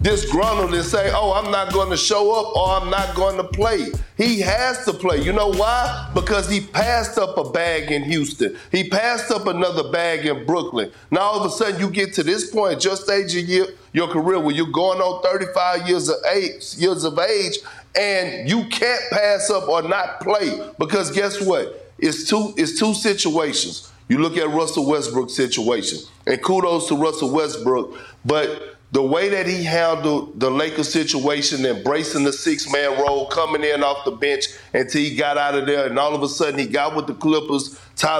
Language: English